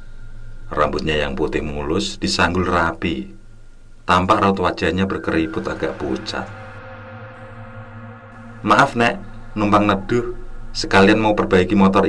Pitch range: 90-110 Hz